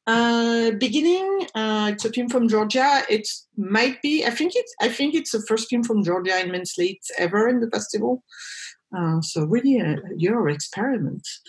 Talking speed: 180 wpm